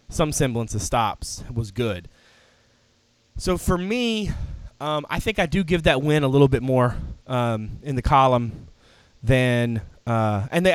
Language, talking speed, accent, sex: English, 160 wpm, American, male